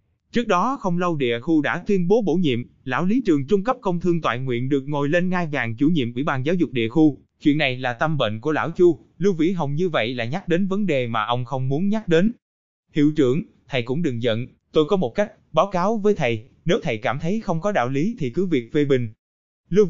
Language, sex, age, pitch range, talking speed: Vietnamese, male, 20-39, 130-180 Hz, 255 wpm